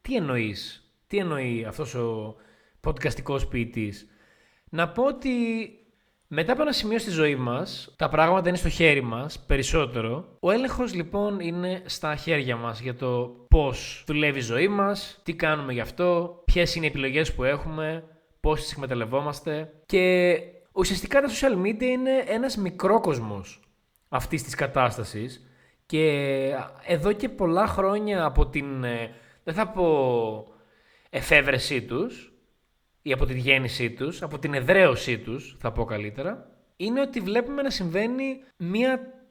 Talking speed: 140 wpm